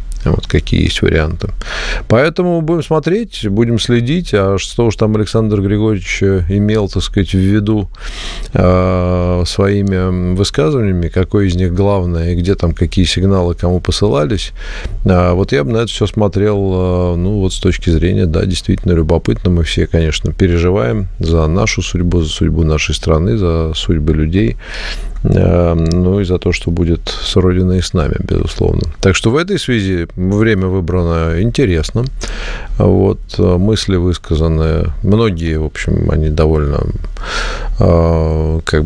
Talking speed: 145 wpm